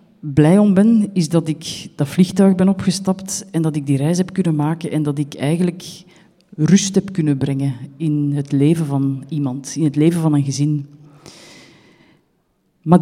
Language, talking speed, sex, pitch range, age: Dutch, 175 wpm, female, 145-175 Hz, 40-59